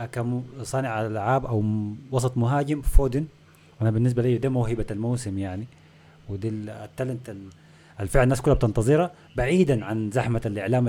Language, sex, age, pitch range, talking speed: Arabic, male, 30-49, 105-135 Hz, 125 wpm